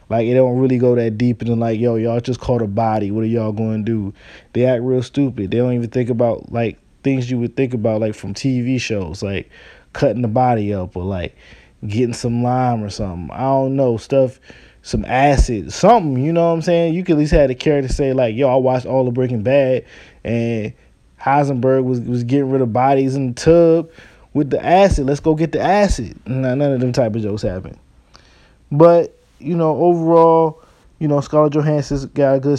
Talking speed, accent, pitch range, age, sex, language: 215 wpm, American, 115-150 Hz, 20-39, male, English